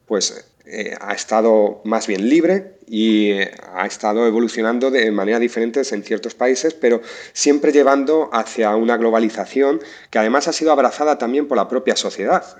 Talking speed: 160 wpm